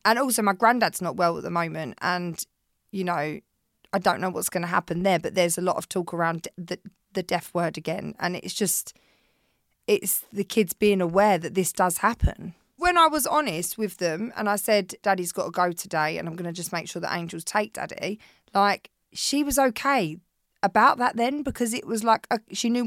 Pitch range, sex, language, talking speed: 180-230 Hz, female, English, 215 wpm